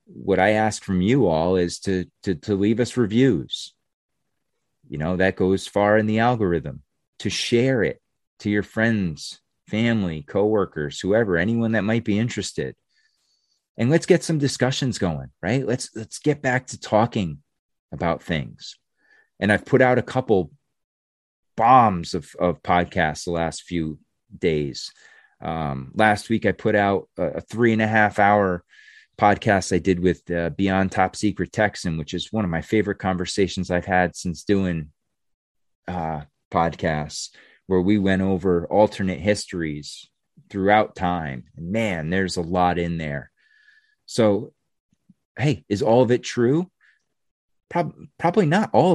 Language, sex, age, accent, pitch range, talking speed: English, male, 30-49, American, 90-120 Hz, 150 wpm